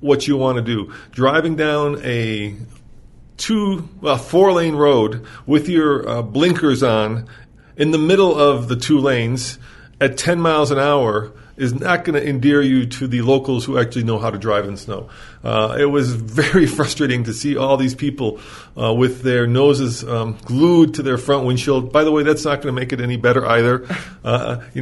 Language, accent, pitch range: English, American, 120-145 Hz